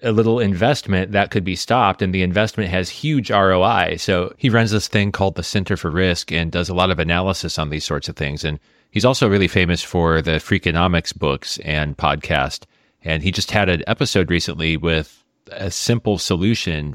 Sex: male